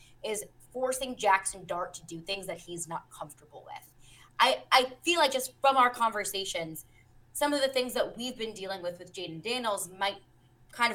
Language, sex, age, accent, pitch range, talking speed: English, female, 20-39, American, 175-240 Hz, 185 wpm